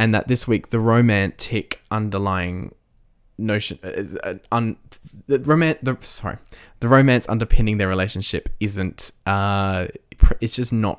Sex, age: male, 20-39